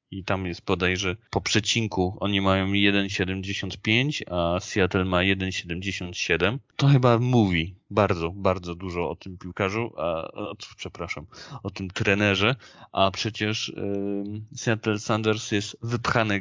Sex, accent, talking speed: male, native, 130 wpm